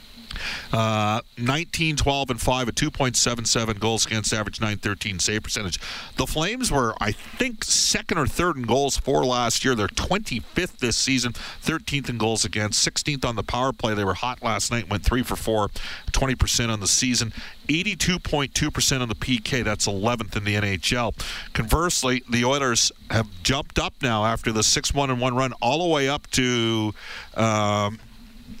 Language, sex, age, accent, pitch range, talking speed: English, male, 50-69, American, 105-130 Hz, 190 wpm